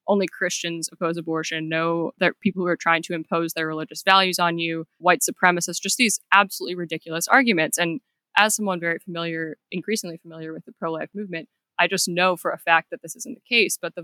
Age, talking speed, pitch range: 20-39, 205 wpm, 165-185 Hz